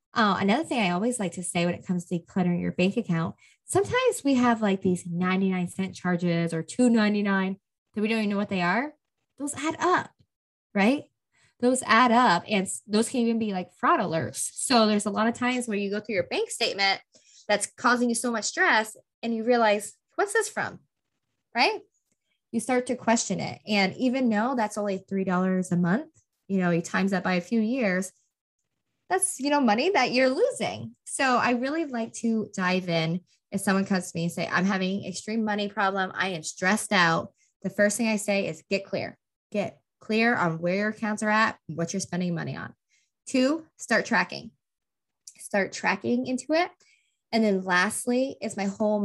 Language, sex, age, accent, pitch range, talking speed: English, female, 20-39, American, 185-245 Hz, 200 wpm